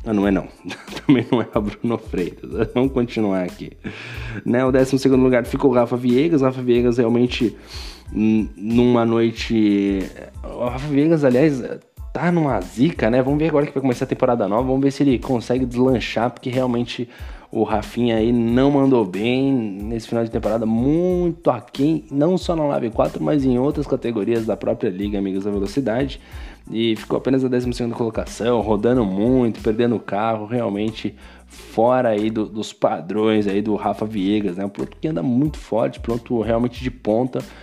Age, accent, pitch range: 20-39, Brazilian, 105-130 Hz